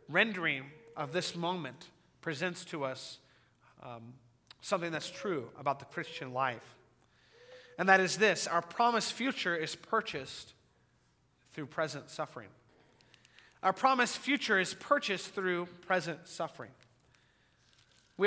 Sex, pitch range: male, 155-205 Hz